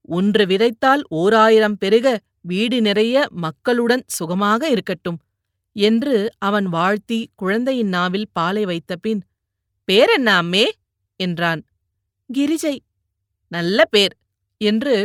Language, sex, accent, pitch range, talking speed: Tamil, female, native, 180-245 Hz, 100 wpm